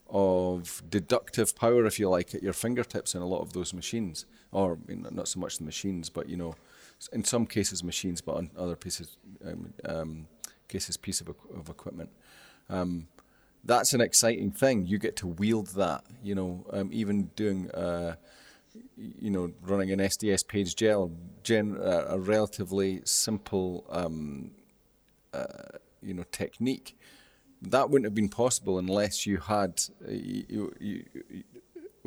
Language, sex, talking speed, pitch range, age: English, male, 160 wpm, 90-105 Hz, 30-49